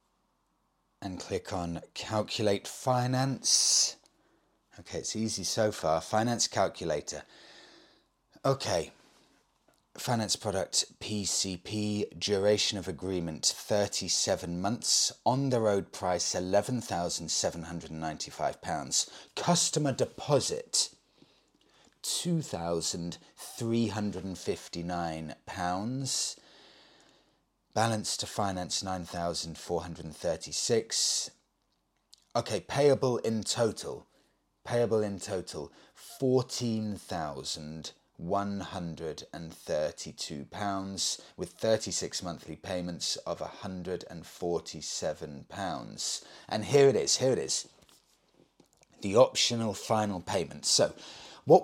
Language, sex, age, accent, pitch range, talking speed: English, male, 30-49, British, 85-115 Hz, 70 wpm